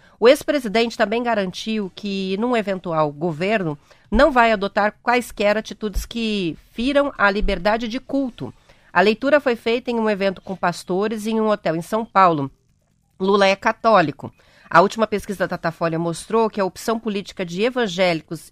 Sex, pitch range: female, 185-235 Hz